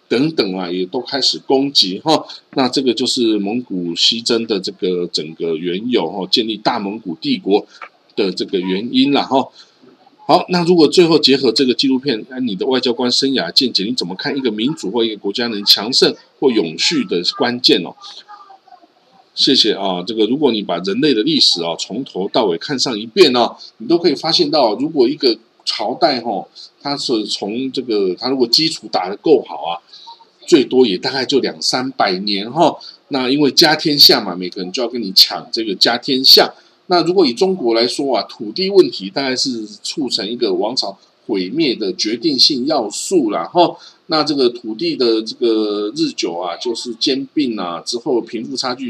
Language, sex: Chinese, male